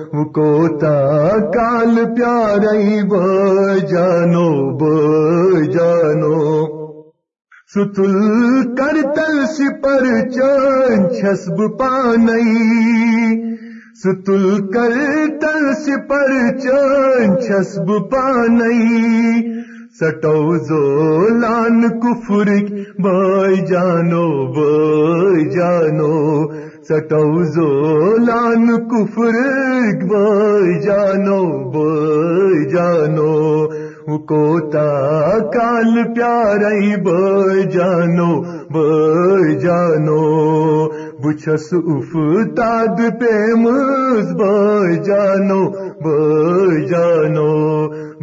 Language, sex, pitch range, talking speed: Urdu, male, 155-230 Hz, 55 wpm